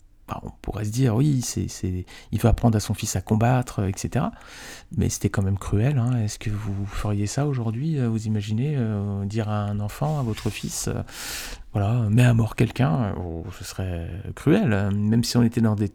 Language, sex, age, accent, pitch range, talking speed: French, male, 40-59, French, 105-135 Hz, 205 wpm